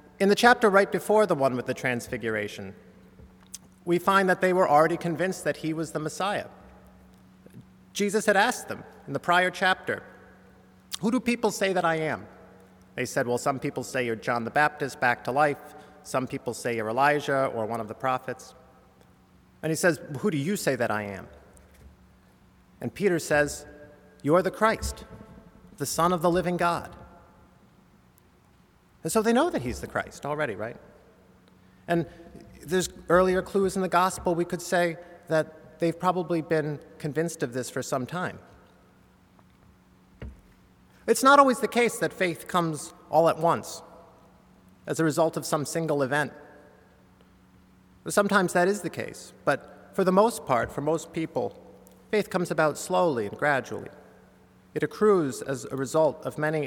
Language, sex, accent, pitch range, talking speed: English, male, American, 130-180 Hz, 165 wpm